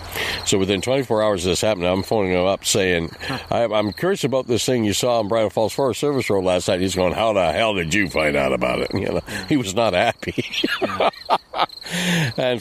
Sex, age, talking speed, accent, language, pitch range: male, 60-79, 215 wpm, American, English, 85-105 Hz